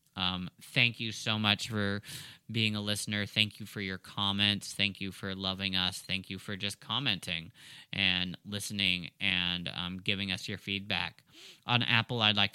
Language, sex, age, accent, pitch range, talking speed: English, male, 30-49, American, 95-115 Hz, 170 wpm